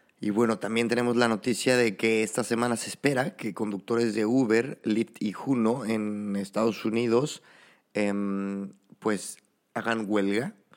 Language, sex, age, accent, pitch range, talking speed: Spanish, male, 30-49, Mexican, 100-120 Hz, 145 wpm